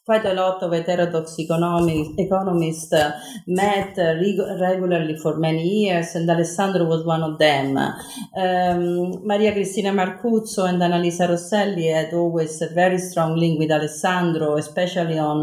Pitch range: 150-190 Hz